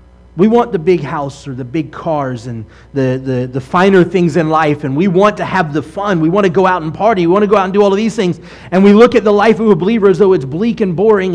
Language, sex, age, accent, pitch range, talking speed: English, male, 30-49, American, 175-225 Hz, 295 wpm